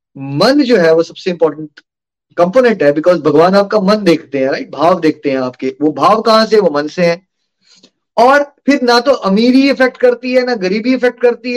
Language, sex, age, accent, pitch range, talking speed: Hindi, male, 20-39, native, 180-240 Hz, 90 wpm